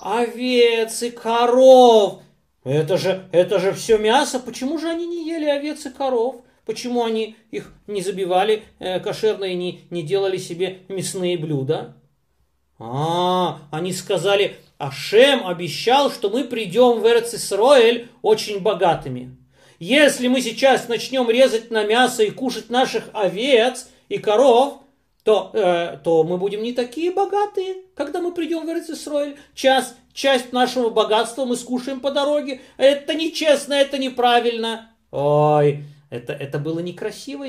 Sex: male